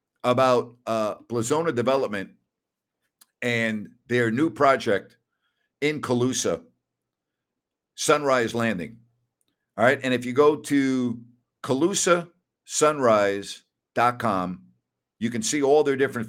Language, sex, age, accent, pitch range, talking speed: English, male, 50-69, American, 110-130 Hz, 95 wpm